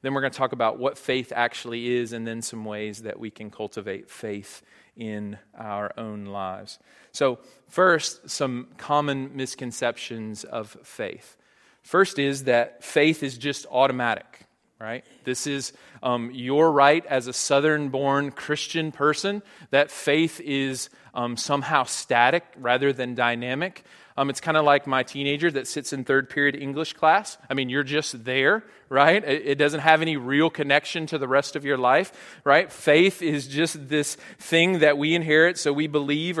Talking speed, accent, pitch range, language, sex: 170 wpm, American, 130-160 Hz, English, male